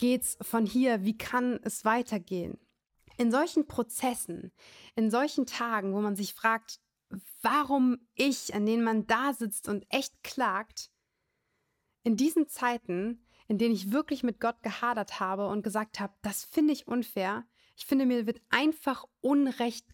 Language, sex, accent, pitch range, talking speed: German, female, German, 205-245 Hz, 155 wpm